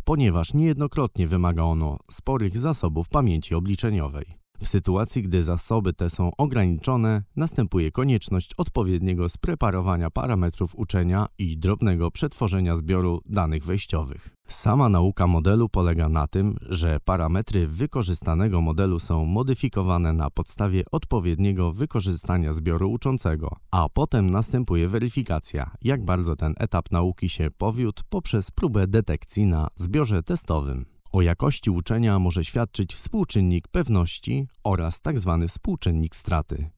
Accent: native